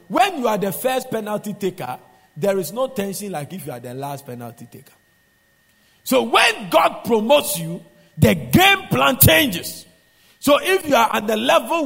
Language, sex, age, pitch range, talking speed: English, male, 50-69, 150-240 Hz, 175 wpm